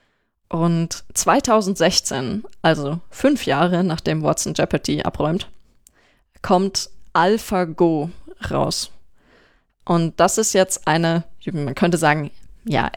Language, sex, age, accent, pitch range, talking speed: German, female, 20-39, German, 165-190 Hz, 95 wpm